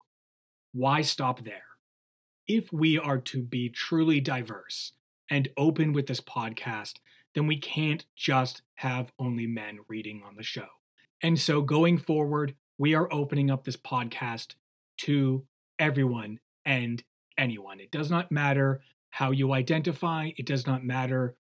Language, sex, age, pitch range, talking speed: English, male, 30-49, 125-170 Hz, 145 wpm